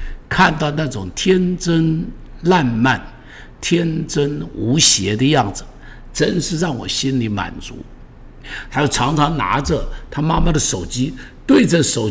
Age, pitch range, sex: 60-79, 100-160 Hz, male